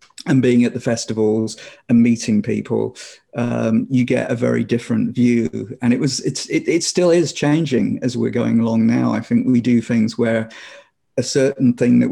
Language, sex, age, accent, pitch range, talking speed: English, male, 40-59, British, 115-130 Hz, 185 wpm